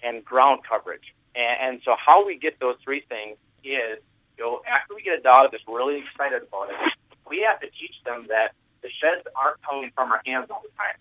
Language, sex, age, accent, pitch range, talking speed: English, male, 40-59, American, 120-155 Hz, 225 wpm